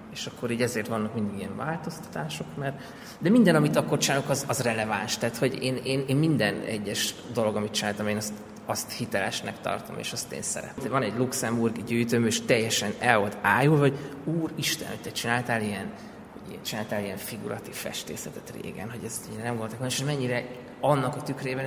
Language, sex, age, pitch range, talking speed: Hungarian, male, 20-39, 110-125 Hz, 180 wpm